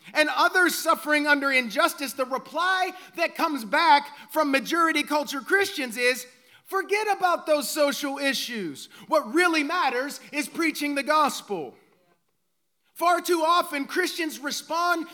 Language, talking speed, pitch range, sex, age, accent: English, 125 wpm, 245-330 Hz, male, 30-49, American